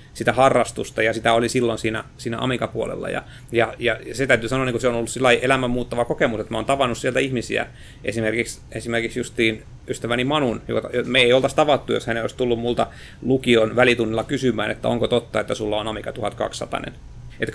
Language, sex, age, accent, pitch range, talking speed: Finnish, male, 30-49, native, 115-130 Hz, 200 wpm